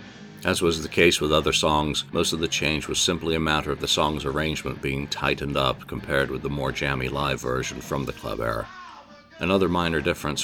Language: English